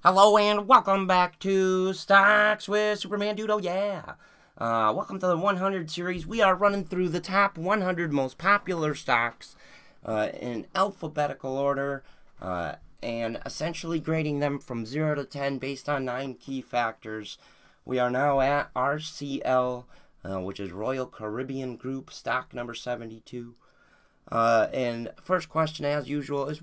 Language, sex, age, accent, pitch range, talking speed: English, male, 30-49, American, 115-165 Hz, 145 wpm